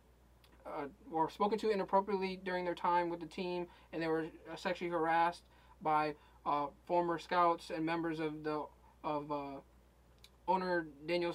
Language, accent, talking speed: English, American, 150 wpm